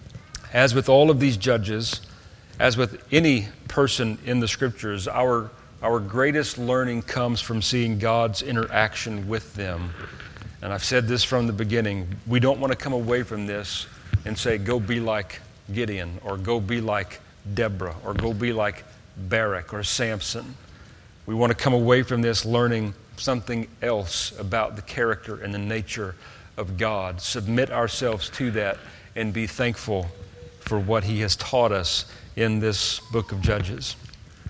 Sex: male